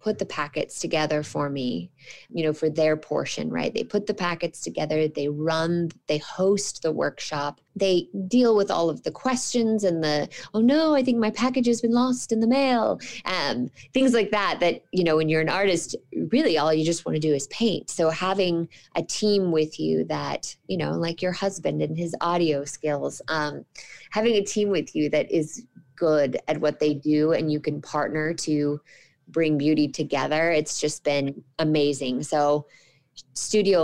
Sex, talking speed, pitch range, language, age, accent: female, 190 wpm, 150-180 Hz, English, 20-39, American